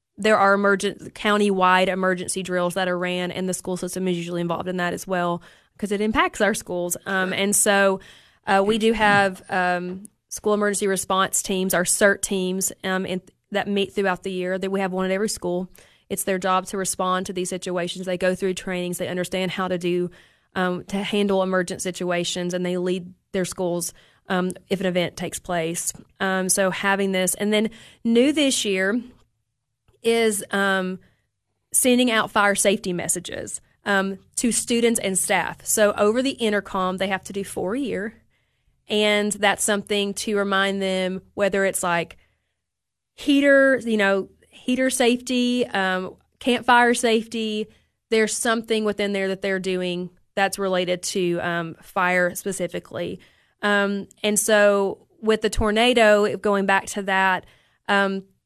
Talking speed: 165 wpm